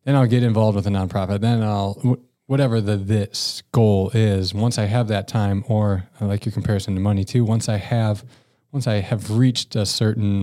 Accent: American